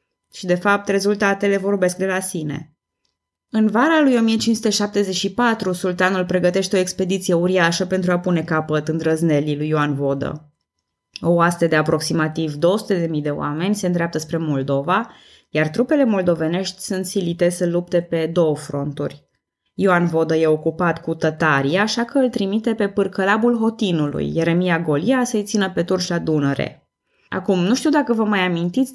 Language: Romanian